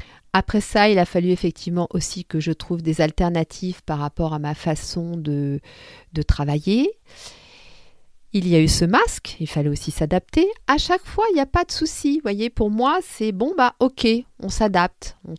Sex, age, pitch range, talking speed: female, 40-59, 165-215 Hz, 195 wpm